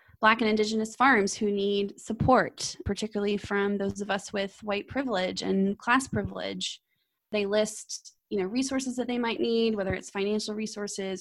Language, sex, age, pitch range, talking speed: English, female, 20-39, 195-220 Hz, 155 wpm